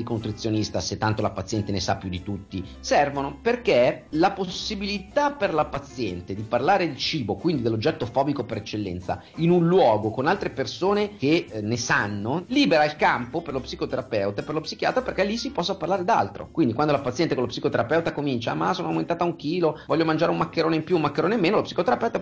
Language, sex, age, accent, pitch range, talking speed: Italian, male, 40-59, native, 105-150 Hz, 210 wpm